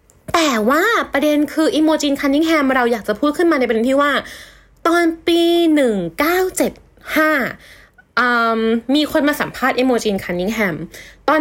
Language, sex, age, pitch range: Thai, female, 20-39, 220-300 Hz